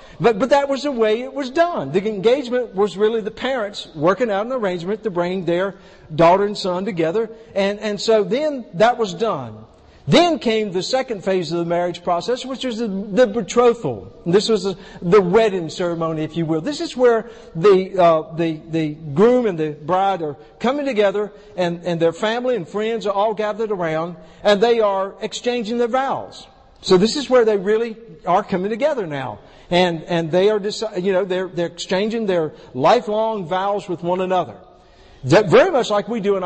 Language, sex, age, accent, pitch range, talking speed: English, male, 50-69, American, 175-225 Hz, 190 wpm